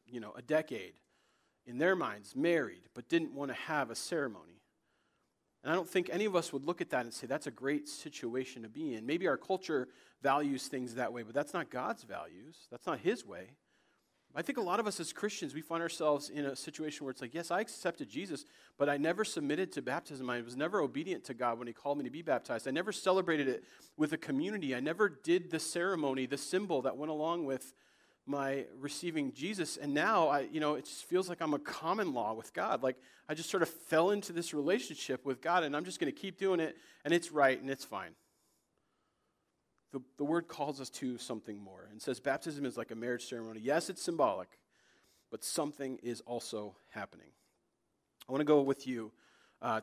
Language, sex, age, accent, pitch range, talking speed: English, male, 40-59, American, 125-170 Hz, 220 wpm